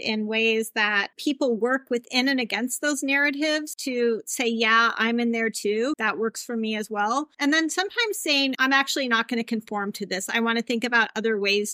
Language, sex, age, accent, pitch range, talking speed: English, female, 40-59, American, 215-260 Hz, 215 wpm